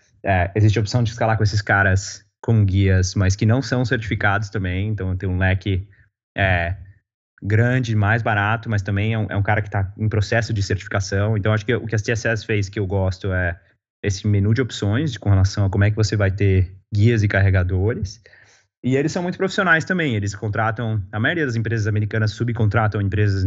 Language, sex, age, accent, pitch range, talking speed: Portuguese, male, 20-39, Brazilian, 95-110 Hz, 205 wpm